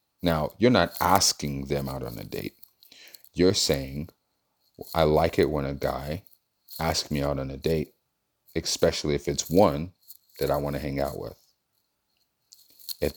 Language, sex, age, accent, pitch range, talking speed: English, male, 30-49, American, 75-105 Hz, 160 wpm